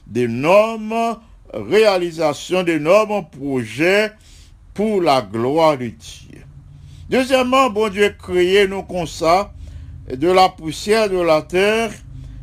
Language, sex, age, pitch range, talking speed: English, male, 60-79, 160-200 Hz, 100 wpm